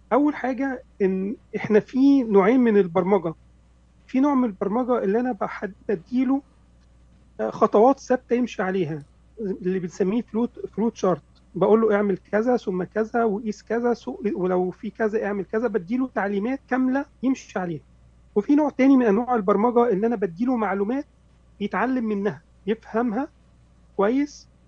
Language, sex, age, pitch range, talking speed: Arabic, male, 40-59, 195-245 Hz, 135 wpm